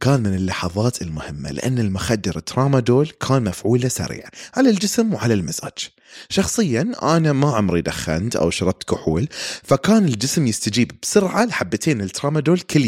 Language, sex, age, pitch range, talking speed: Arabic, male, 30-49, 100-145 Hz, 135 wpm